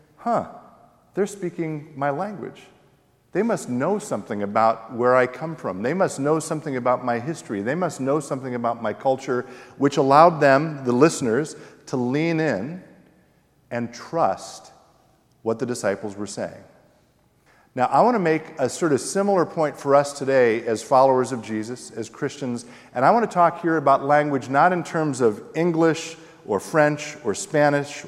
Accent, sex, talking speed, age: American, male, 170 wpm, 50-69